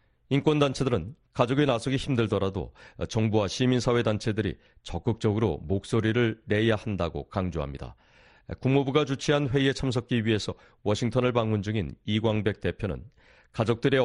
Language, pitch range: Korean, 105-125 Hz